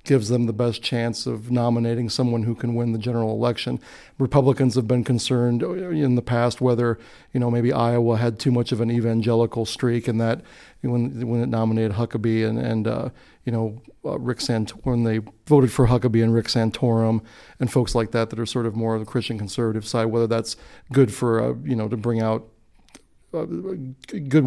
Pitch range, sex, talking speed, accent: 115-130 Hz, male, 200 wpm, American